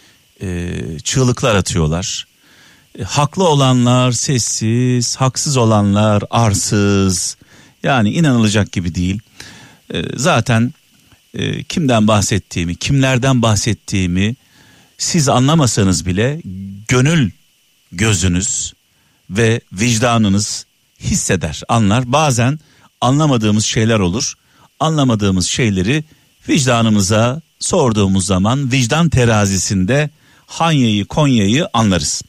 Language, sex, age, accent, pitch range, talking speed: Turkish, male, 50-69, native, 105-145 Hz, 75 wpm